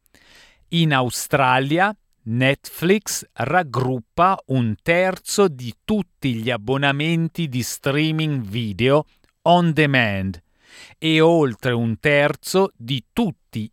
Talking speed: 90 wpm